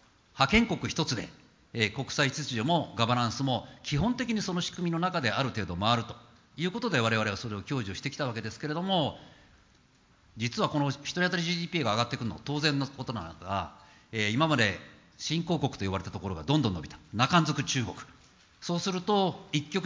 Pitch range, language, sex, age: 105-160 Hz, Japanese, male, 50-69